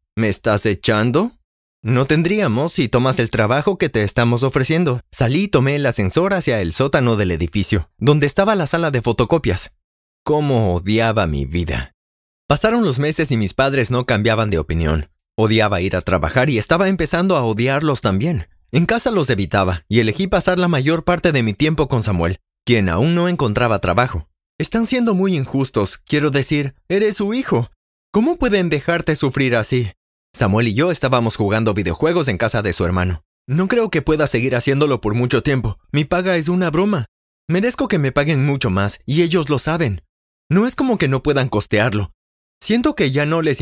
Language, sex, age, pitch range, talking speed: Spanish, male, 30-49, 100-165 Hz, 185 wpm